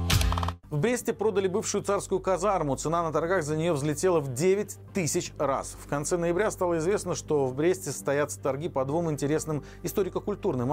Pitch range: 140-185 Hz